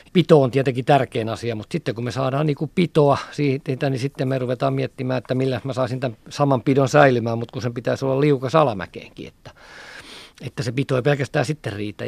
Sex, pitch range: male, 115-135 Hz